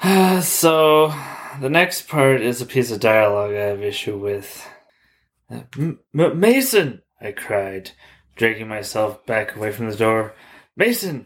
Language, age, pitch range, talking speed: English, 20-39, 130-205 Hz, 130 wpm